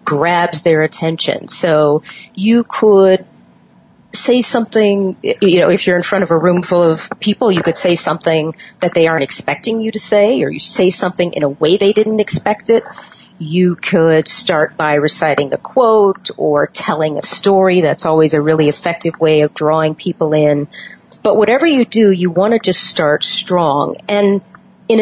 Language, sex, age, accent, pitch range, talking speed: English, female, 40-59, American, 160-205 Hz, 180 wpm